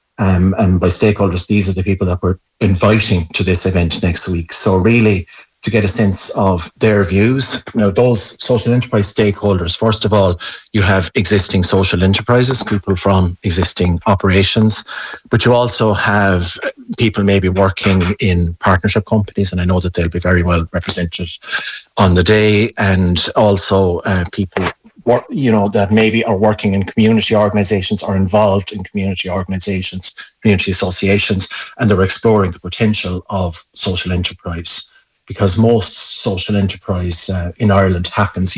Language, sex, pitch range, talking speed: English, male, 90-105 Hz, 160 wpm